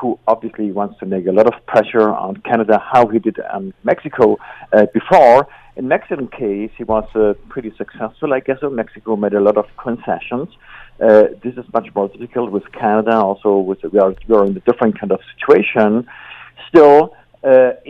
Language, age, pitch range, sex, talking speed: English, 50-69, 110-125 Hz, male, 190 wpm